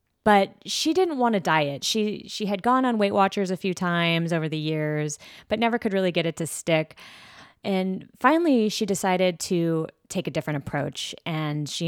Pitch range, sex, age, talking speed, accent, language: 160-200 Hz, female, 20-39, 190 wpm, American, English